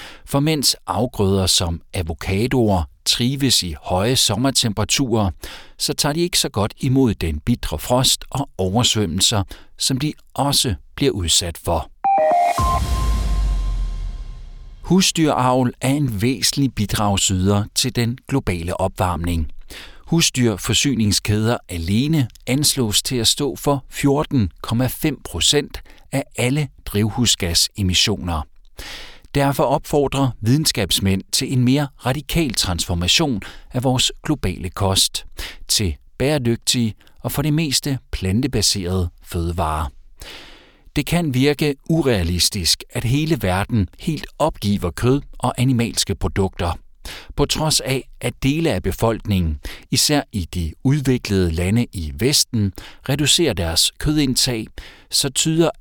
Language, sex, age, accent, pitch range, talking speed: Danish, male, 60-79, native, 90-135 Hz, 110 wpm